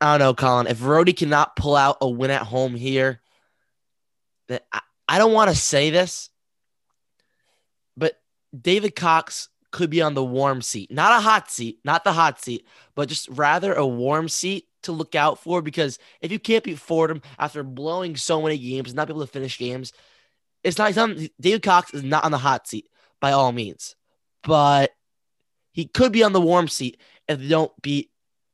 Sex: male